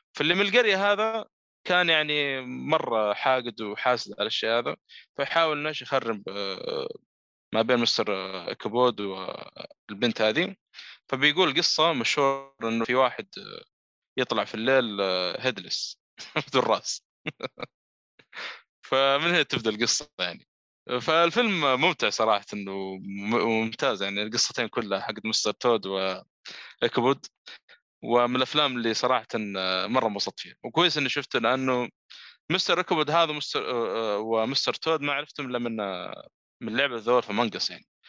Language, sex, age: Arabic, male, 20-39